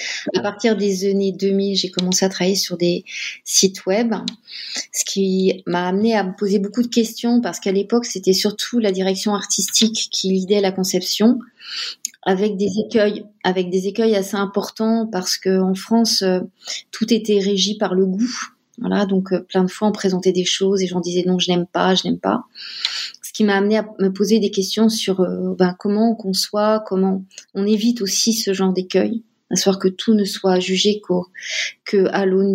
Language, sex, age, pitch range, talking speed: French, female, 30-49, 185-210 Hz, 185 wpm